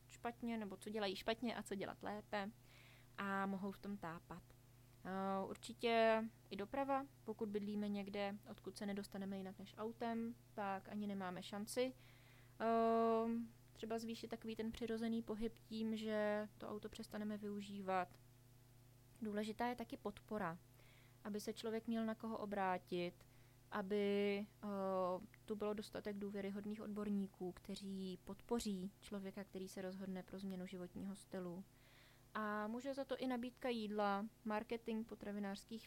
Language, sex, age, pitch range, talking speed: Czech, female, 20-39, 185-220 Hz, 130 wpm